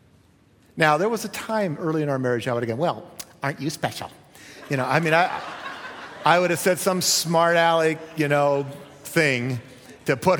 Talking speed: 195 wpm